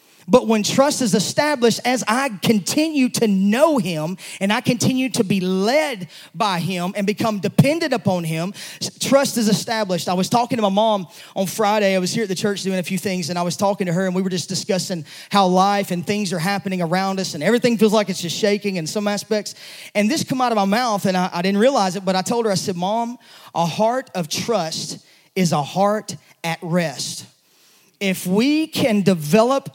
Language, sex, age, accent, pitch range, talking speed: English, male, 30-49, American, 185-235 Hz, 215 wpm